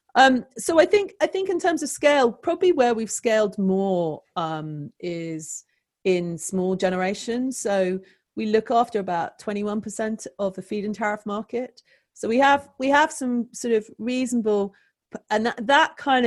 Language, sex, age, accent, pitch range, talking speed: English, female, 30-49, British, 170-235 Hz, 160 wpm